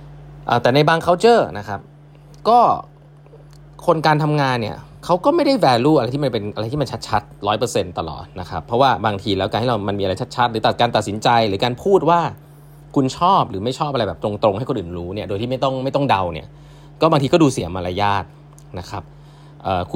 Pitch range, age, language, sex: 100-145 Hz, 20-39, Thai, male